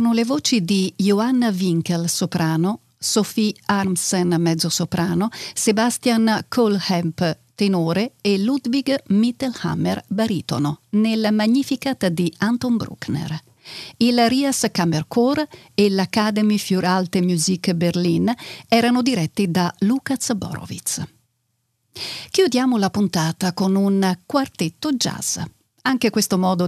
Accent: native